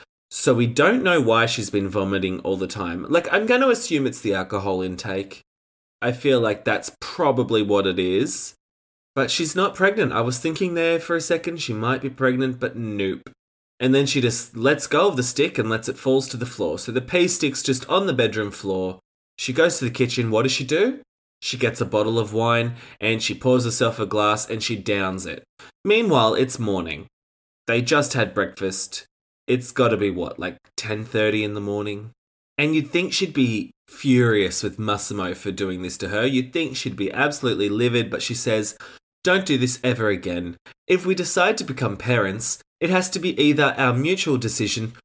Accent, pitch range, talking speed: Australian, 105-140 Hz, 200 wpm